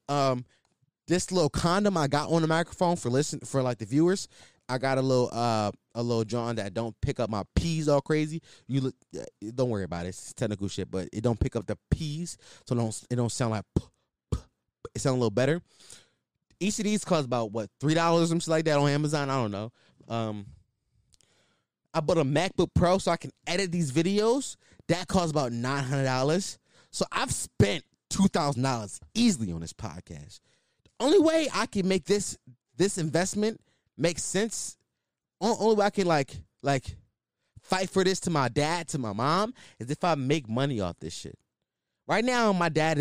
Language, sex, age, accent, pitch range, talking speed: English, male, 20-39, American, 115-170 Hz, 195 wpm